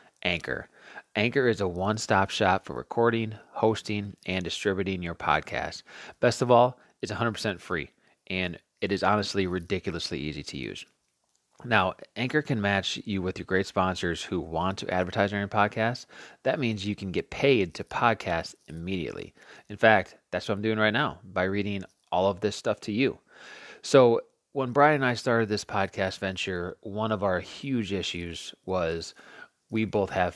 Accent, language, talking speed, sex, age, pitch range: American, English, 170 wpm, male, 30-49, 90-110 Hz